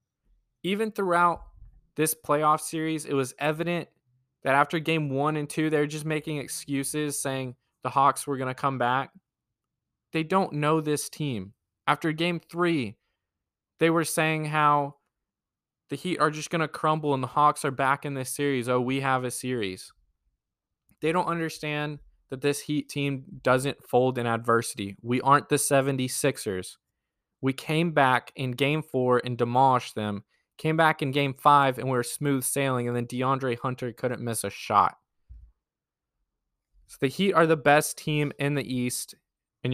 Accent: American